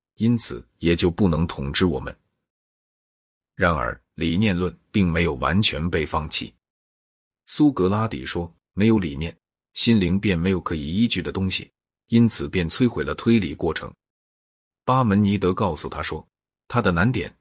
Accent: native